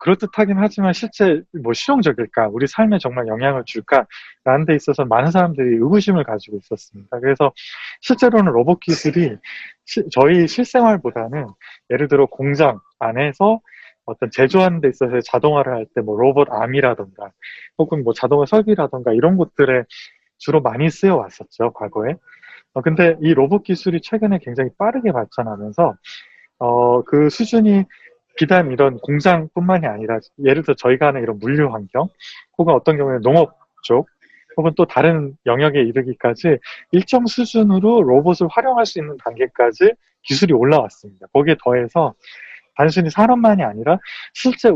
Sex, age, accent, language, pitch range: male, 20-39, native, Korean, 125-200 Hz